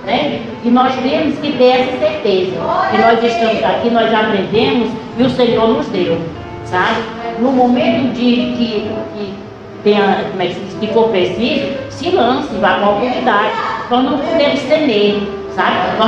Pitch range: 195-235 Hz